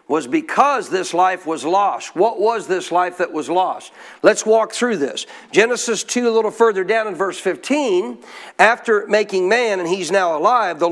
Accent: American